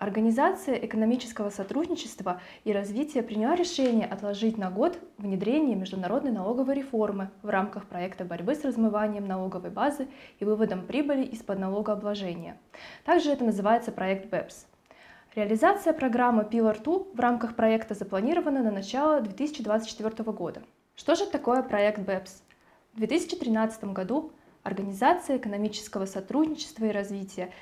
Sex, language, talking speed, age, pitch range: female, Russian, 120 wpm, 20-39, 205-270 Hz